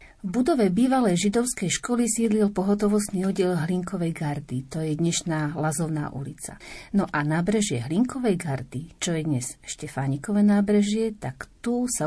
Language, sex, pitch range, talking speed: Slovak, female, 160-205 Hz, 135 wpm